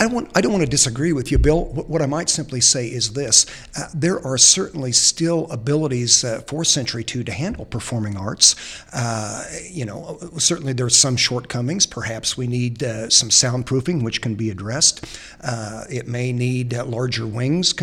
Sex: male